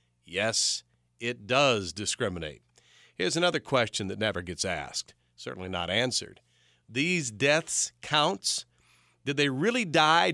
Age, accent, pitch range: 40-59, American, 120-170 Hz